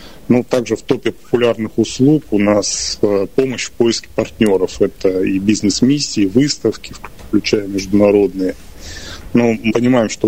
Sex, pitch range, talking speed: male, 100-120 Hz, 135 wpm